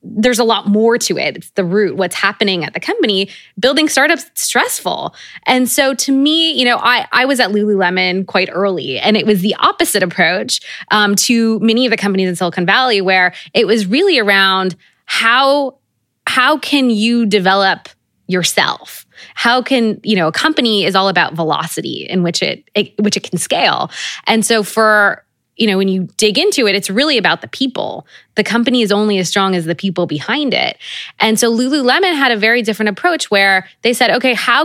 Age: 20-39